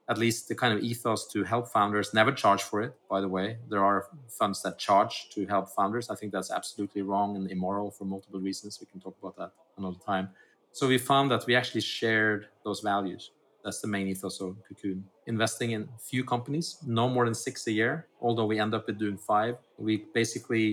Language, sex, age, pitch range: English, male, 30-49, 105-125 Hz